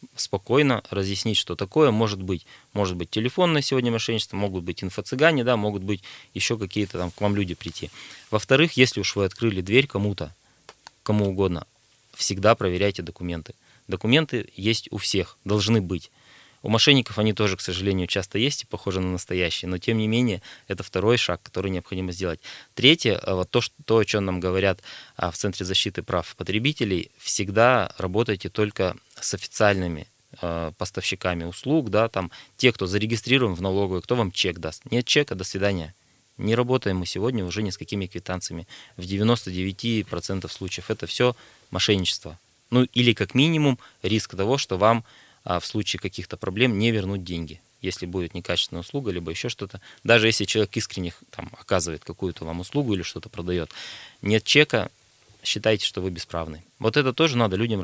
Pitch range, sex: 90-115 Hz, male